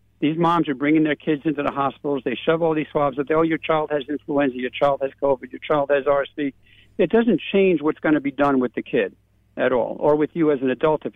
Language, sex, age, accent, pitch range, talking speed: English, male, 60-79, American, 130-170 Hz, 265 wpm